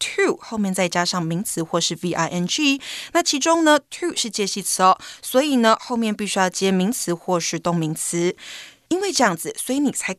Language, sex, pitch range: Chinese, female, 190-290 Hz